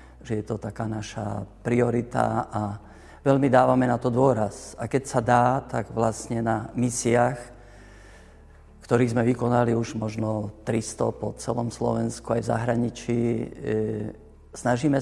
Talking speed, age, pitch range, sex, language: 135 wpm, 50-69, 110-120 Hz, male, Slovak